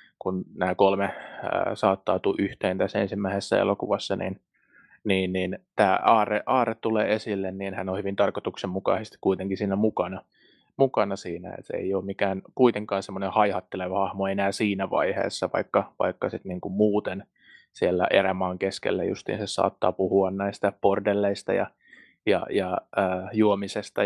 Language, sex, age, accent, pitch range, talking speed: Finnish, male, 20-39, native, 95-105 Hz, 145 wpm